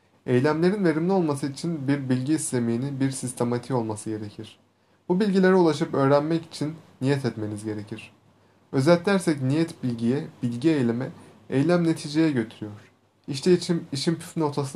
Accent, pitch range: native, 115-150 Hz